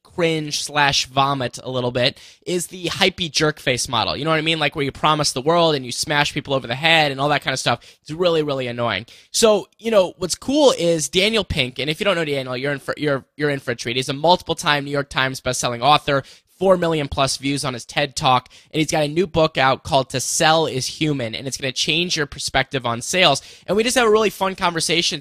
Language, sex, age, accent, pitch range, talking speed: English, male, 10-29, American, 135-165 Hz, 260 wpm